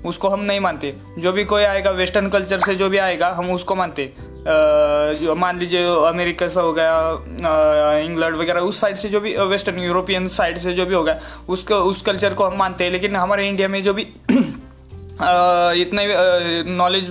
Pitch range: 175-190 Hz